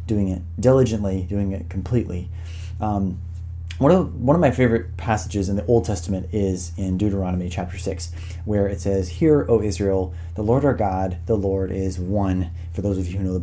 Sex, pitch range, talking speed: male, 85-110 Hz, 200 wpm